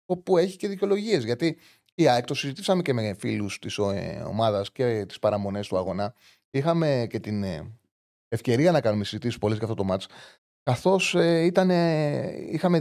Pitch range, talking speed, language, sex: 110-165 Hz, 175 wpm, Greek, male